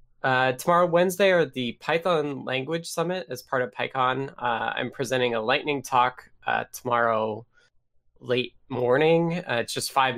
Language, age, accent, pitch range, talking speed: English, 20-39, American, 115-135 Hz, 155 wpm